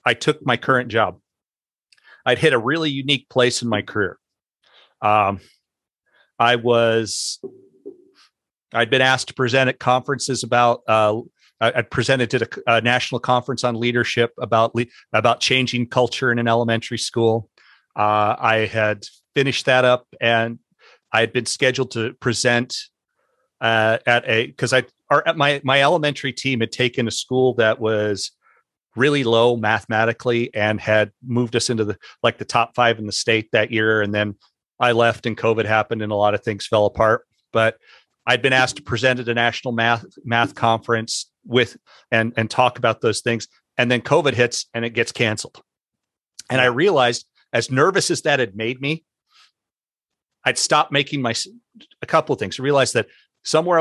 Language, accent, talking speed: English, American, 175 wpm